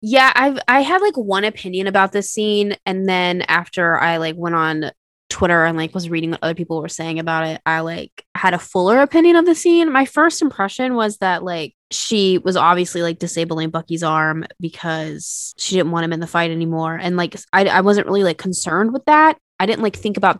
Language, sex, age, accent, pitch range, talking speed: English, female, 20-39, American, 170-200 Hz, 220 wpm